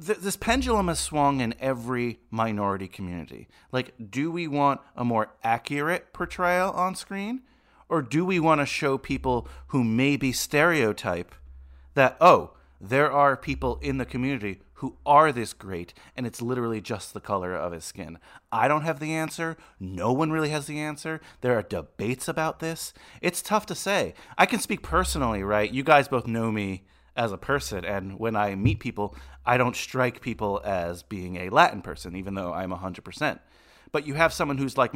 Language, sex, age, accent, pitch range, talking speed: English, male, 30-49, American, 100-150 Hz, 185 wpm